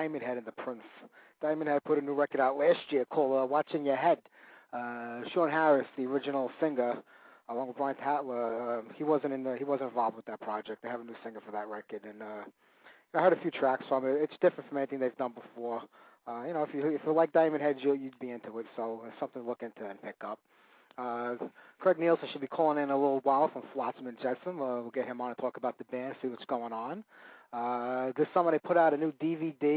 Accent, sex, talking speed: American, male, 255 wpm